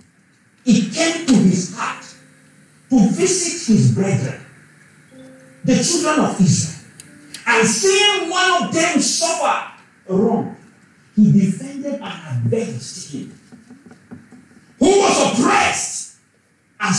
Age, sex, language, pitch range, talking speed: 50-69, male, English, 180-295 Hz, 105 wpm